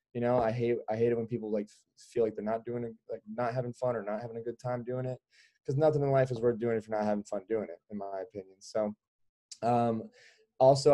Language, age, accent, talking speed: English, 20-39, American, 260 wpm